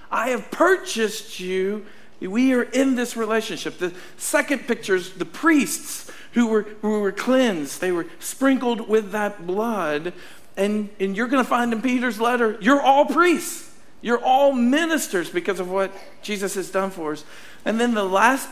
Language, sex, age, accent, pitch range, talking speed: English, male, 50-69, American, 160-220 Hz, 170 wpm